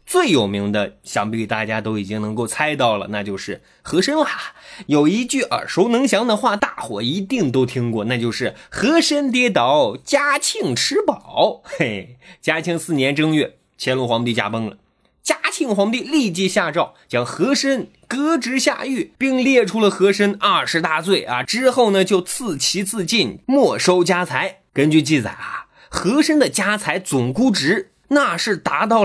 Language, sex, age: Chinese, male, 20-39